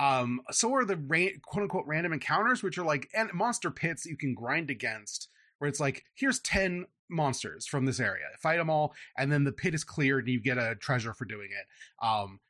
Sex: male